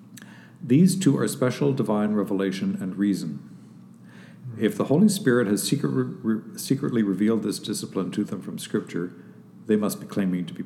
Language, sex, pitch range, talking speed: English, male, 95-120 Hz, 150 wpm